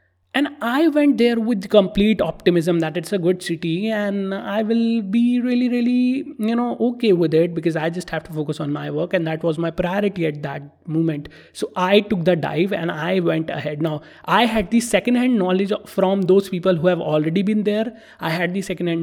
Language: English